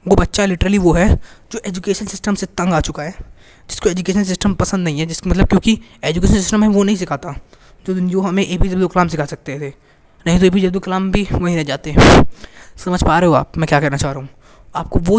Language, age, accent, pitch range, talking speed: Hindi, 20-39, native, 160-195 Hz, 240 wpm